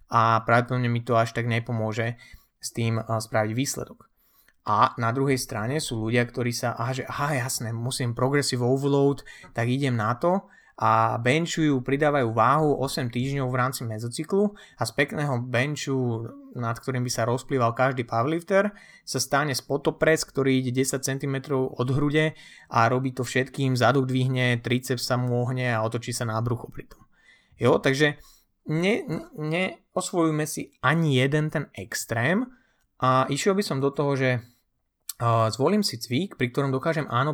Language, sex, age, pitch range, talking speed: Slovak, male, 30-49, 120-145 Hz, 155 wpm